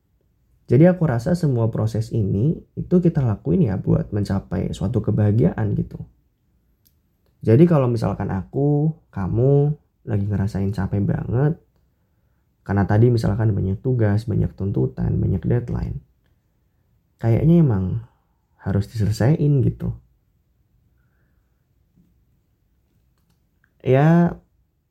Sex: male